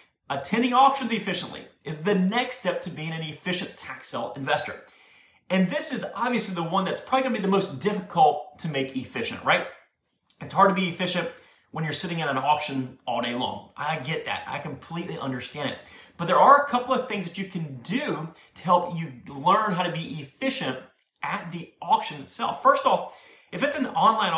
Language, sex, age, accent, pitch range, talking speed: English, male, 30-49, American, 160-200 Hz, 205 wpm